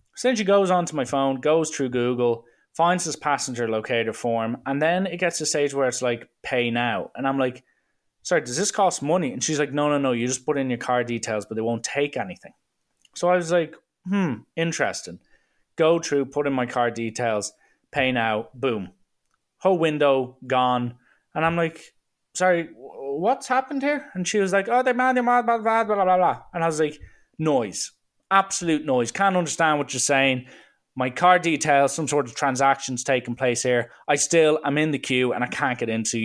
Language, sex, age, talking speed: English, male, 20-39, 205 wpm